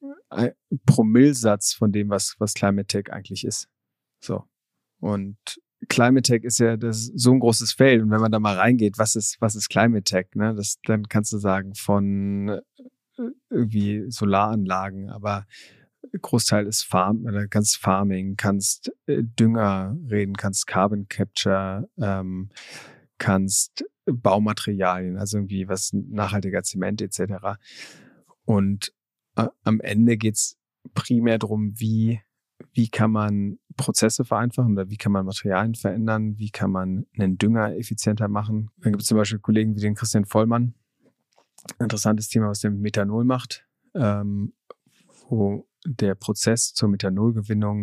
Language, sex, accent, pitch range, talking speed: German, male, German, 100-115 Hz, 140 wpm